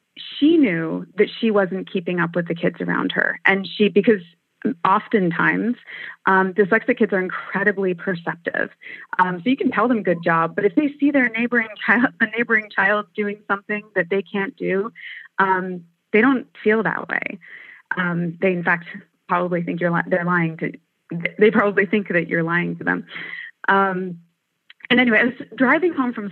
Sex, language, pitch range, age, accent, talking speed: female, English, 180-225 Hz, 30-49, American, 180 wpm